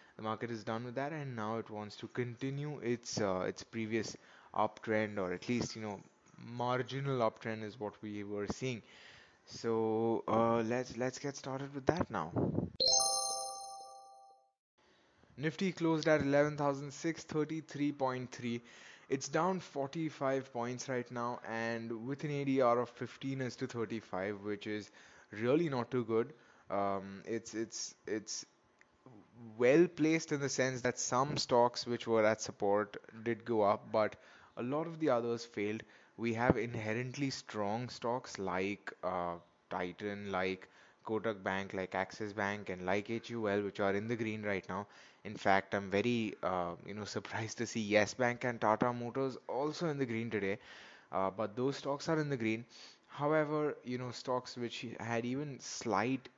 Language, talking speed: English, 170 wpm